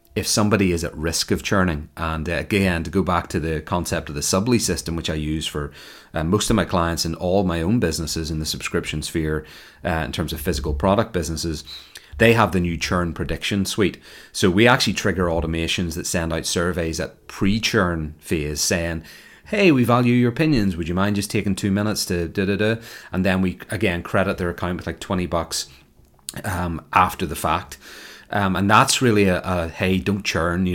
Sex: male